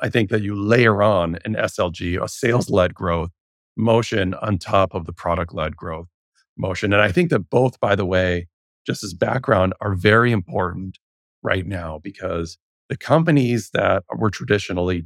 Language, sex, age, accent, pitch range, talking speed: English, male, 40-59, American, 90-110 Hz, 170 wpm